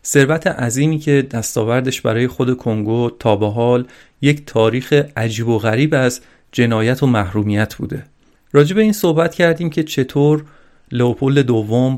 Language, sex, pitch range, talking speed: Persian, male, 120-150 Hz, 140 wpm